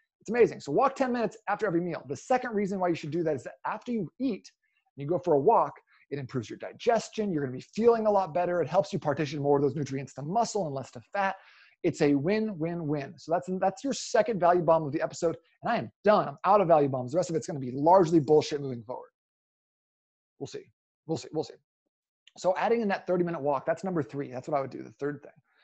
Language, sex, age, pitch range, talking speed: English, male, 30-49, 150-205 Hz, 260 wpm